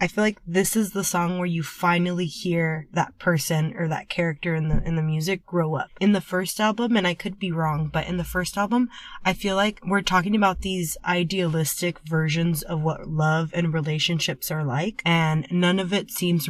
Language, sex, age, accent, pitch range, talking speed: English, female, 20-39, American, 165-200 Hz, 210 wpm